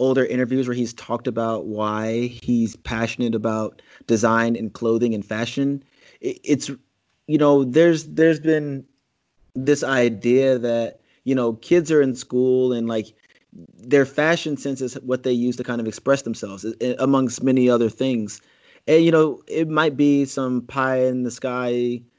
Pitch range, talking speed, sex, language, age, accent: 115-140 Hz, 160 wpm, male, English, 30-49, American